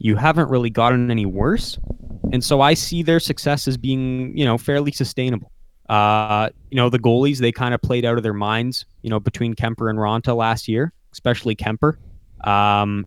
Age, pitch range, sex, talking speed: 20-39, 110-130 Hz, male, 195 wpm